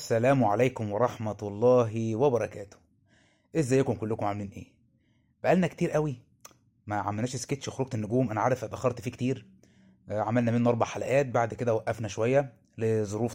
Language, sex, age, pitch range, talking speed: Arabic, male, 20-39, 110-140 Hz, 140 wpm